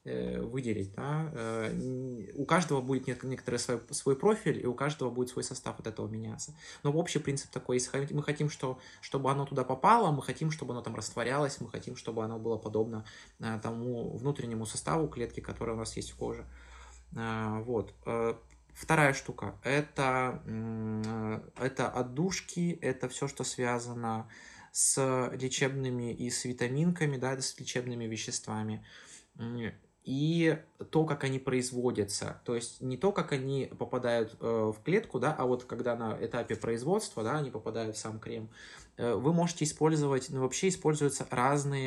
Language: Russian